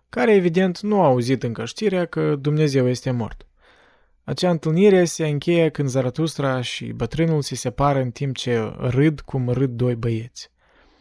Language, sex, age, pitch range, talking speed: Romanian, male, 20-39, 125-155 Hz, 160 wpm